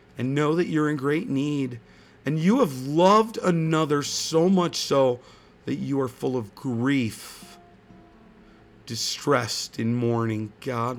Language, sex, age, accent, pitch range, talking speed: English, male, 40-59, American, 105-145 Hz, 135 wpm